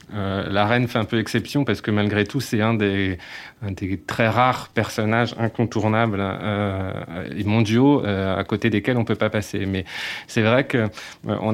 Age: 30-49